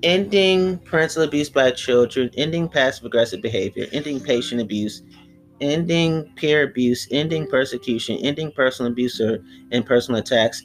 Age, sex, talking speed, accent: 30-49, male, 135 wpm, American